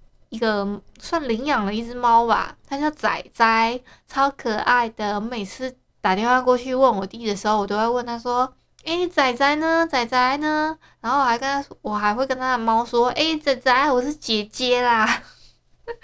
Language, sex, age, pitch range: Chinese, female, 20-39, 215-275 Hz